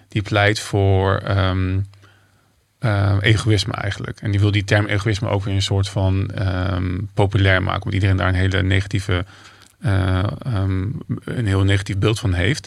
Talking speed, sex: 165 wpm, male